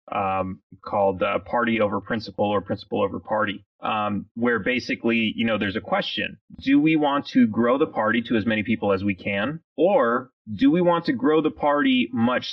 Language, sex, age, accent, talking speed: Dutch, male, 30-49, American, 195 wpm